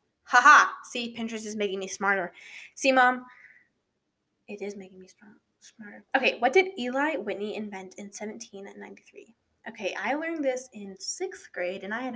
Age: 10-29